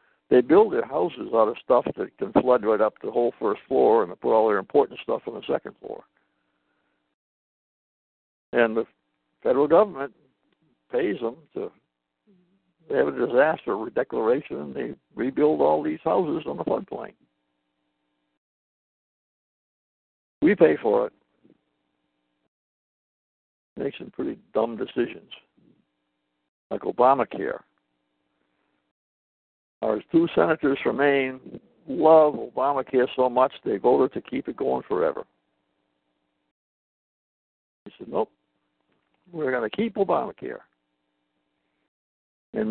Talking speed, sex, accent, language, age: 120 wpm, male, American, English, 60-79